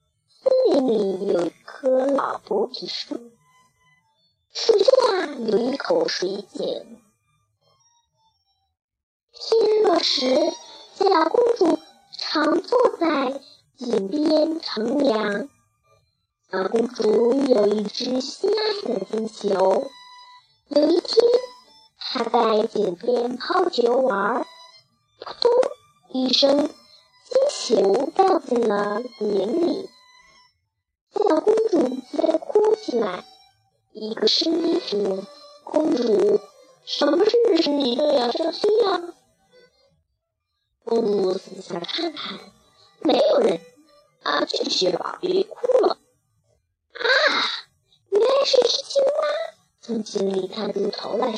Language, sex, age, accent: Chinese, male, 30-49, American